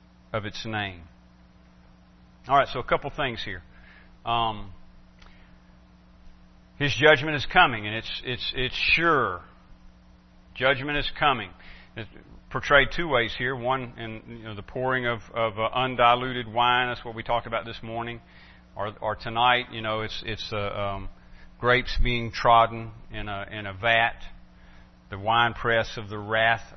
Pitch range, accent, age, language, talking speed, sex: 85-125 Hz, American, 40-59, English, 155 wpm, male